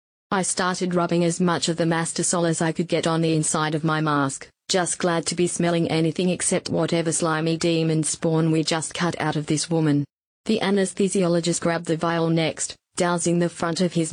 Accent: Australian